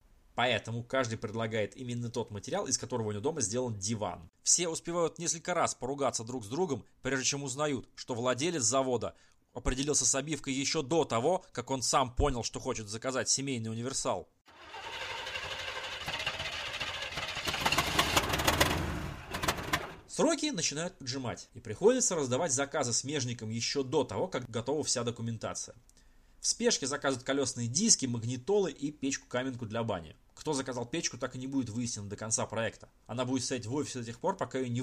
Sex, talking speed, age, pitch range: male, 155 wpm, 30-49, 115-140 Hz